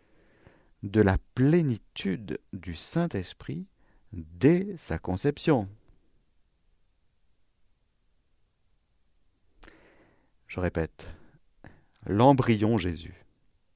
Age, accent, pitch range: 50-69, French, 85-120 Hz